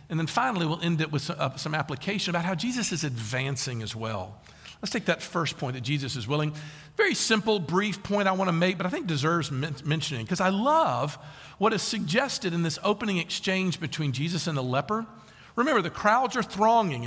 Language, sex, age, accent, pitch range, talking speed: English, male, 50-69, American, 150-215 Hz, 205 wpm